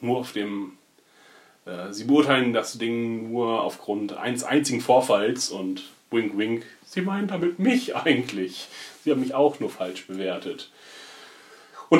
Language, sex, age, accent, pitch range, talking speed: German, male, 30-49, German, 105-135 Hz, 145 wpm